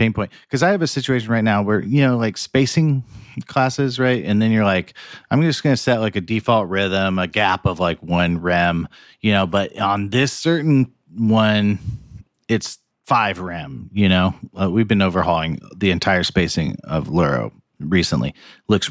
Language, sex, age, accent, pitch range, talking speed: English, male, 40-59, American, 90-115 Hz, 180 wpm